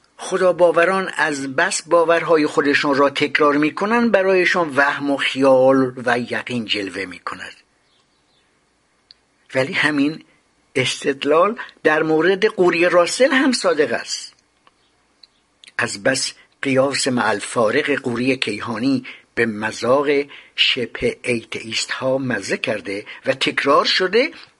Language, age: Persian, 60-79